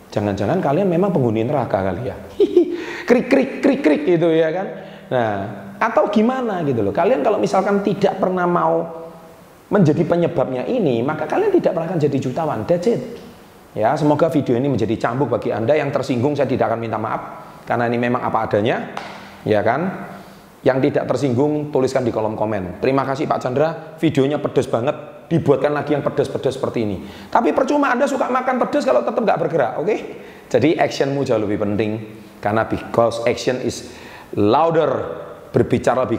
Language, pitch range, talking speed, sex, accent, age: Indonesian, 105-165 Hz, 165 wpm, male, native, 30-49